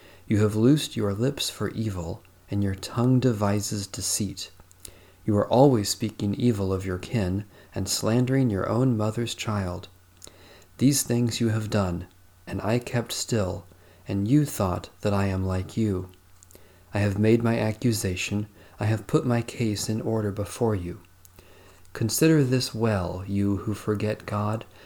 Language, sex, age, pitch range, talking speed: English, male, 40-59, 95-115 Hz, 155 wpm